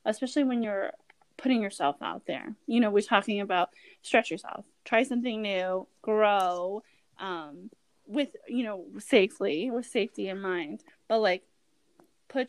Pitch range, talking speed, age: 200-275 Hz, 145 wpm, 20-39